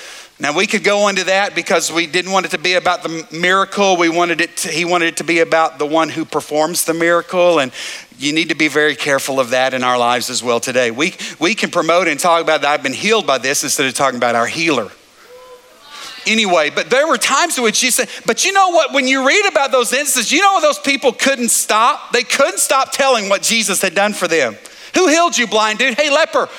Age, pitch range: 50-69, 175-265 Hz